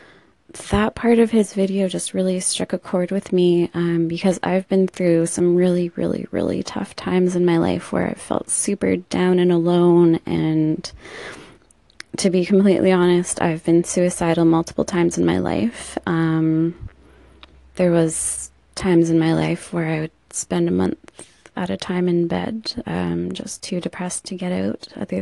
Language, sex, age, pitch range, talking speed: English, female, 20-39, 165-190 Hz, 170 wpm